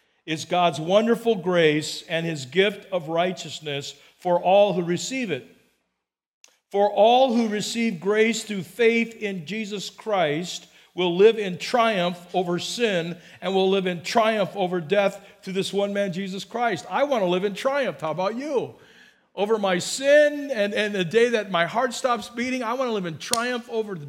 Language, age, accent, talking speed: English, 50-69, American, 175 wpm